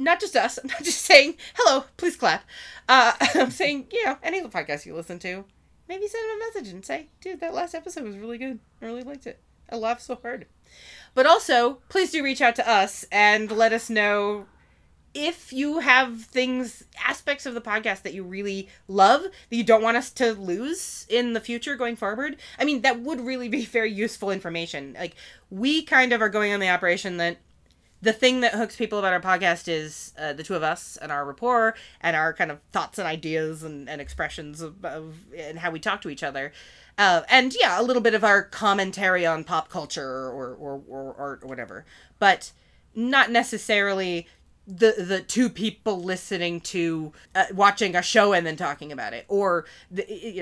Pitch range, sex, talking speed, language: 175-255 Hz, female, 205 wpm, English